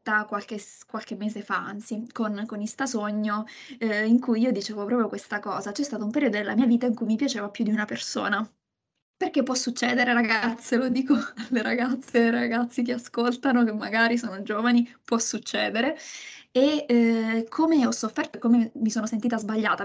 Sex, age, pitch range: female, 20-39, 215-240 Hz